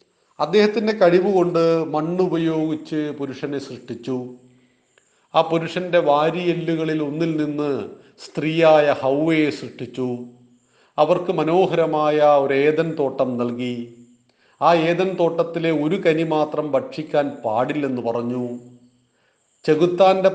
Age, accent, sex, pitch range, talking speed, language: 40-59, native, male, 135-170 Hz, 90 wpm, Malayalam